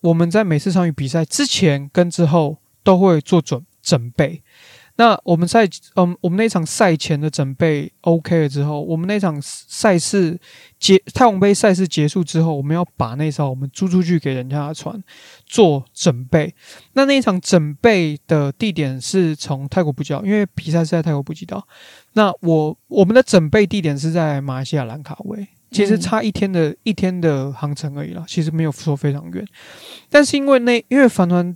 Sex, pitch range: male, 150-190 Hz